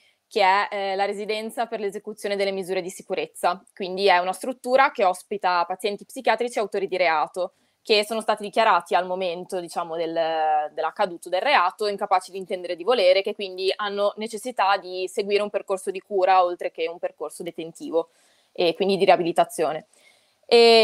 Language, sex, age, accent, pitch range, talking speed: Italian, female, 20-39, native, 180-210 Hz, 170 wpm